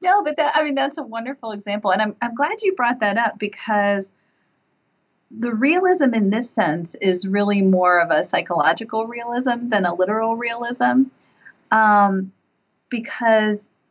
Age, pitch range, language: 30-49, 175-240 Hz, English